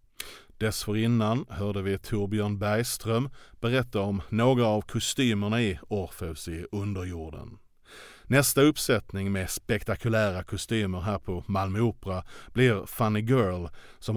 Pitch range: 95-115 Hz